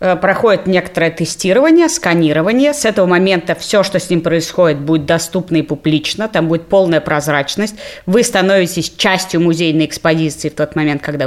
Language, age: Russian, 30-49